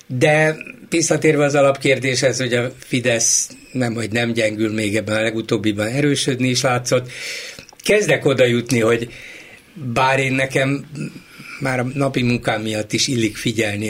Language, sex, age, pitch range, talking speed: Hungarian, male, 60-79, 115-140 Hz, 140 wpm